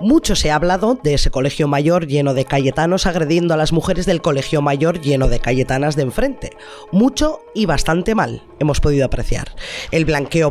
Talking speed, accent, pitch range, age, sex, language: 185 wpm, Spanish, 150-210 Hz, 20-39, female, Spanish